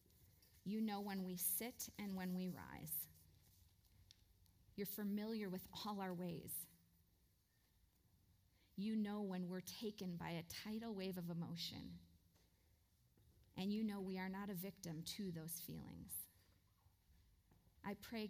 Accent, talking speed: American, 130 wpm